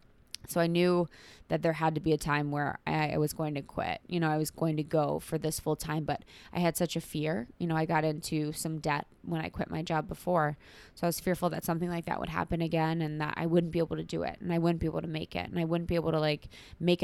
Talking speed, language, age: 290 wpm, English, 20-39